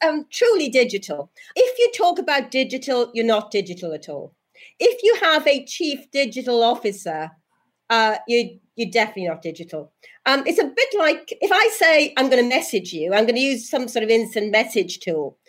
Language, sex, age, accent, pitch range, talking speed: English, female, 40-59, British, 205-285 Hz, 190 wpm